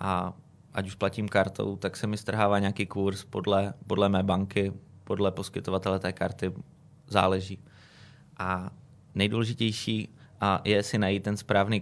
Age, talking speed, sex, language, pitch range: 20-39, 135 wpm, male, Slovak, 95-110 Hz